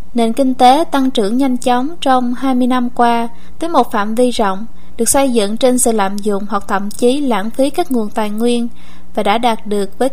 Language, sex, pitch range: Vietnamese, female, 215-255 Hz